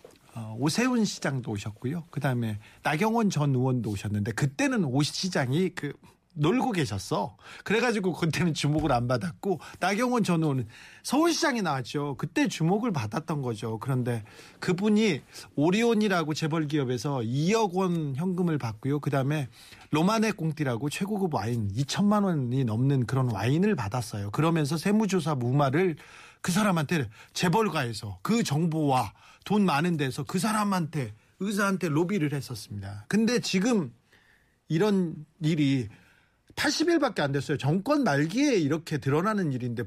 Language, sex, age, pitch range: Korean, male, 40-59, 135-190 Hz